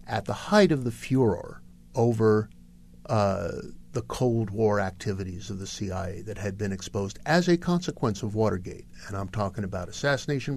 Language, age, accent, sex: English, 50-69, American, male